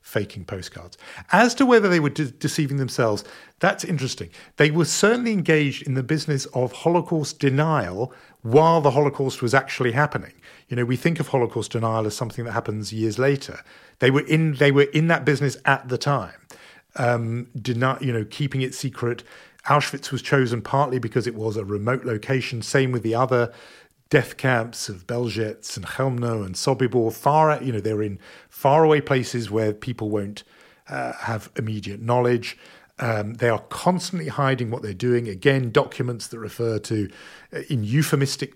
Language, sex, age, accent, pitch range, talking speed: English, male, 40-59, British, 115-145 Hz, 175 wpm